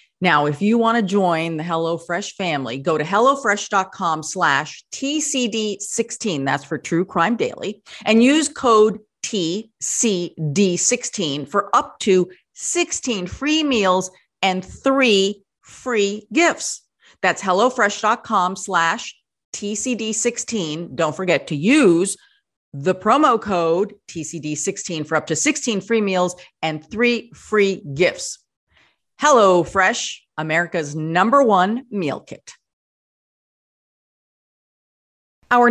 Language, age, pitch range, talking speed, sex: English, 40-59, 170-230 Hz, 105 wpm, female